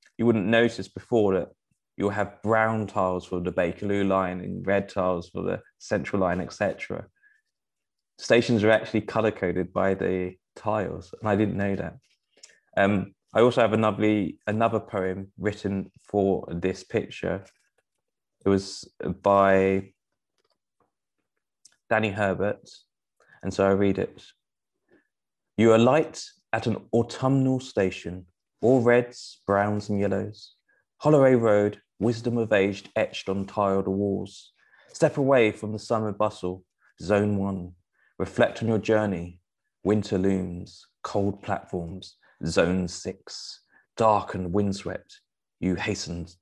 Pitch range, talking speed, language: 95-110 Hz, 130 wpm, English